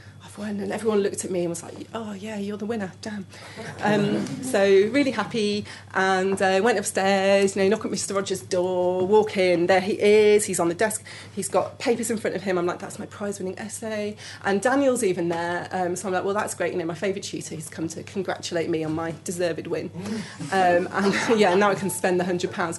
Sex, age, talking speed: female, 30-49, 230 wpm